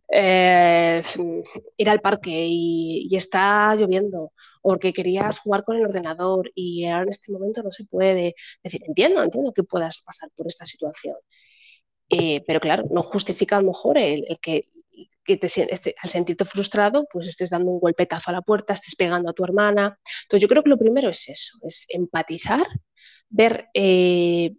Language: Spanish